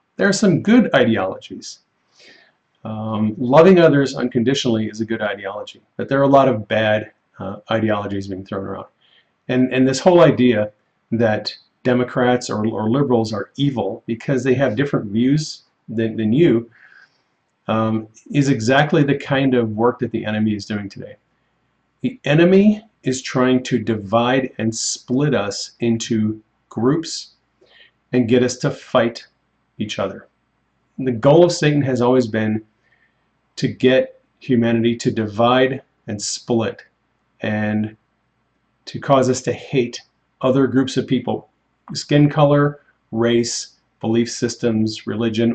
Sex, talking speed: male, 140 wpm